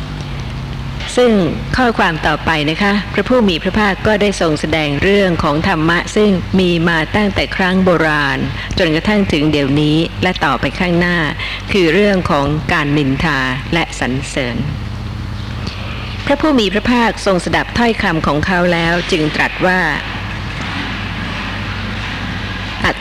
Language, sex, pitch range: Thai, female, 120-195 Hz